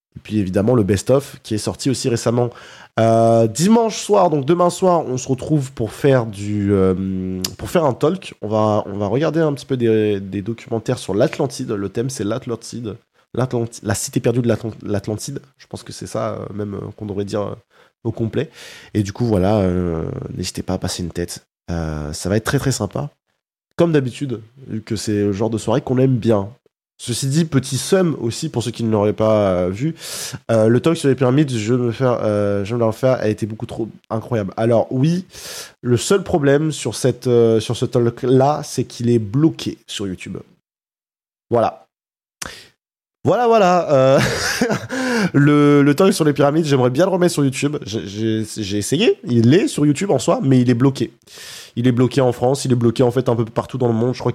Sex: male